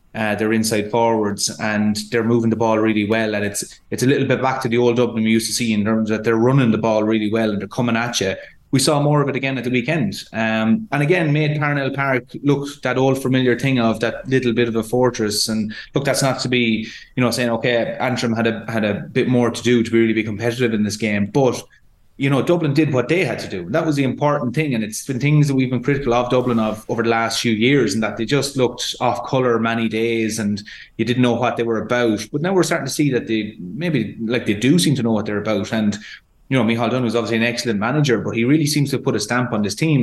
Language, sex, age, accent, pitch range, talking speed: English, male, 20-39, Irish, 110-135 Hz, 270 wpm